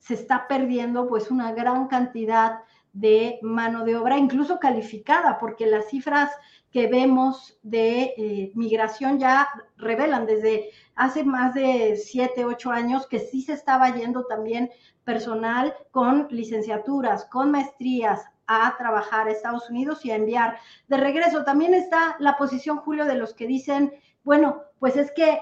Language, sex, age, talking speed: Spanish, female, 40-59, 150 wpm